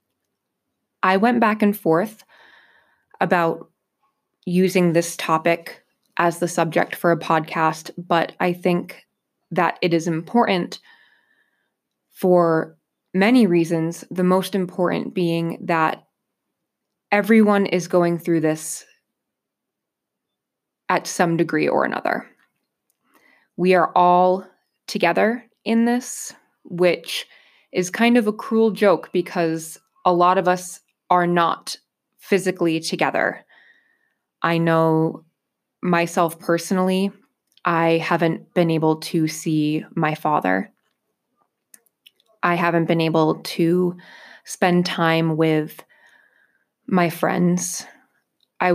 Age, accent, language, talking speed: 20-39, American, English, 105 wpm